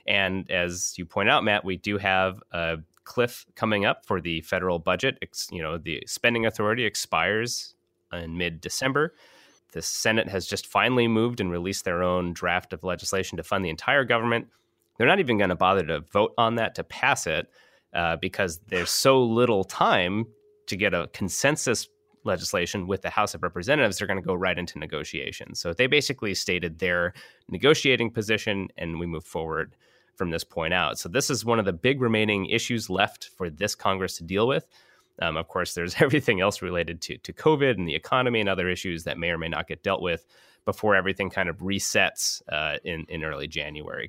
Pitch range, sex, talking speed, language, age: 90-120 Hz, male, 195 wpm, English, 30-49